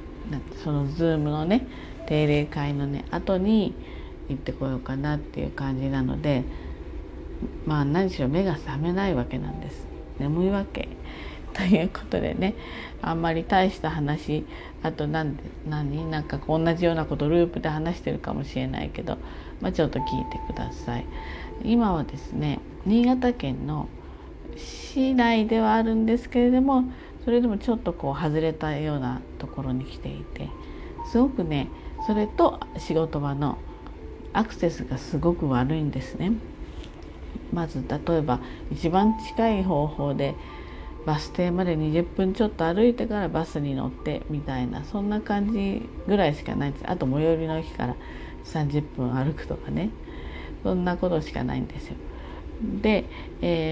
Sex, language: female, Japanese